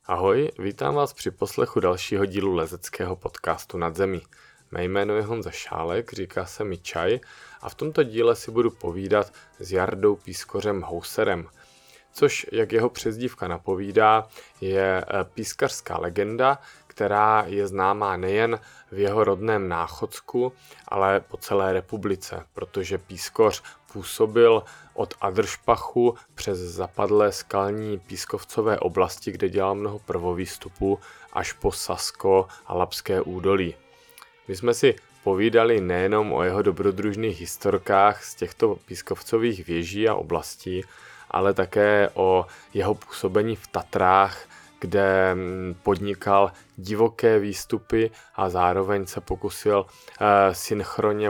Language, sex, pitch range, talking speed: Czech, male, 95-105 Hz, 120 wpm